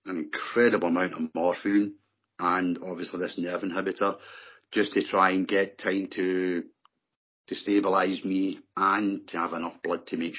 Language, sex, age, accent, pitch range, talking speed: English, male, 40-59, British, 90-110 Hz, 155 wpm